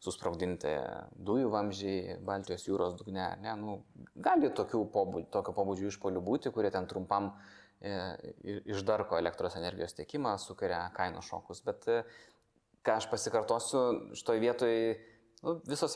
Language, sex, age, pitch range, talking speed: English, male, 20-39, 100-140 Hz, 120 wpm